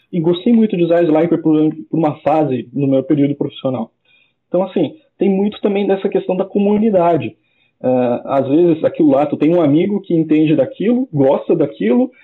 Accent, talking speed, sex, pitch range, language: Brazilian, 170 wpm, male, 155-210 Hz, Portuguese